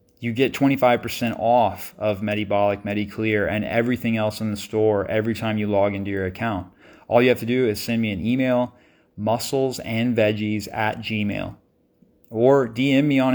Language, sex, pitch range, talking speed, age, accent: English, male, 105-125 Hz, 165 wpm, 30-49, American